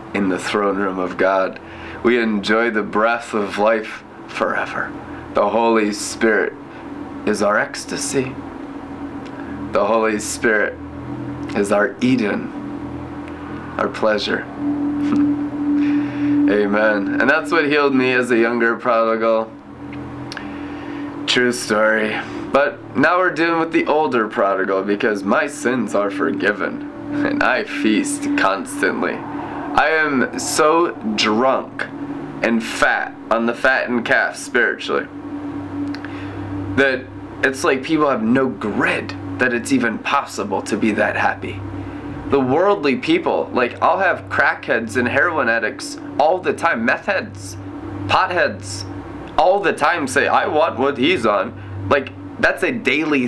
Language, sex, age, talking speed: English, male, 20-39, 125 wpm